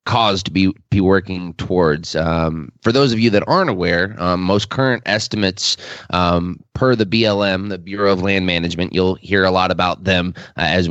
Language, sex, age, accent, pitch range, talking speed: English, male, 20-39, American, 85-105 Hz, 195 wpm